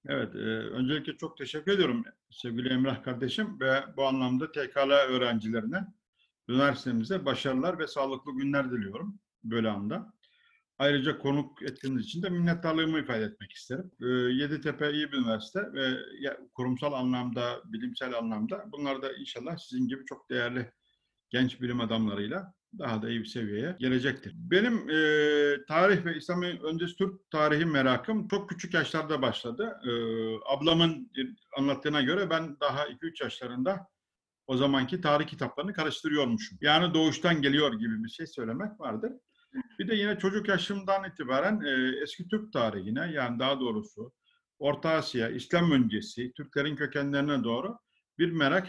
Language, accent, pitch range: Turkish, native, 130-195 Hz